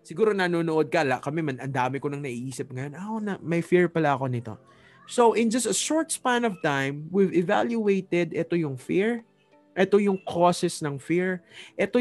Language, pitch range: English, 140-195 Hz